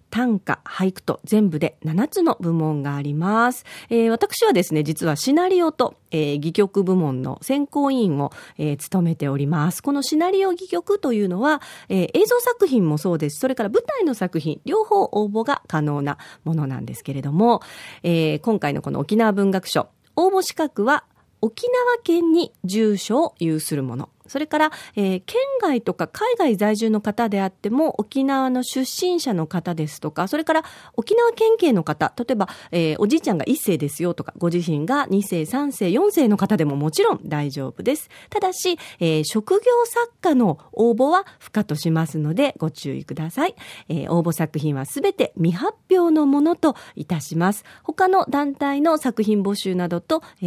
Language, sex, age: Japanese, female, 40-59